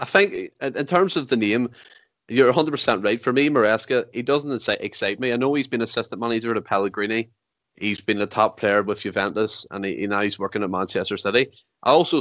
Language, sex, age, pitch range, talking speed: English, male, 20-39, 105-135 Hz, 210 wpm